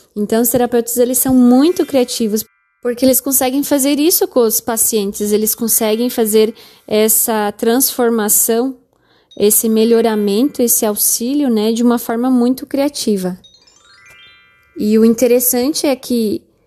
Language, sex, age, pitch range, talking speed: Portuguese, female, 10-29, 220-260 Hz, 125 wpm